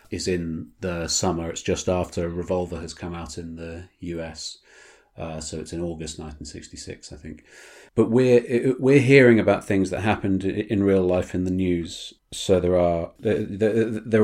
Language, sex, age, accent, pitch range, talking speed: English, male, 40-59, British, 90-105 Hz, 175 wpm